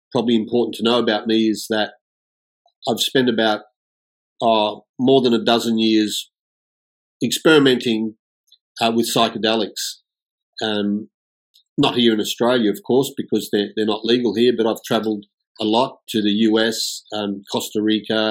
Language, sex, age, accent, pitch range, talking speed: English, male, 40-59, Australian, 105-120 Hz, 150 wpm